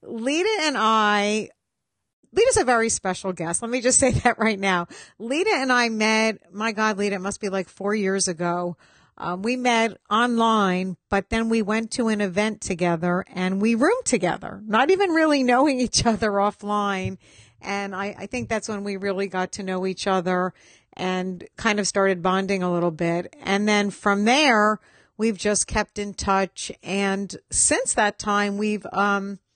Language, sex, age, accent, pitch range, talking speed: English, female, 50-69, American, 190-225 Hz, 180 wpm